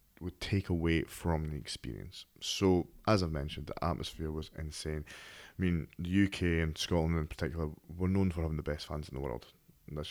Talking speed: 200 wpm